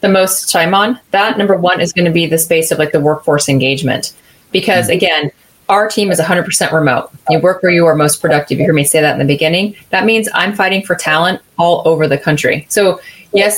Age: 30-49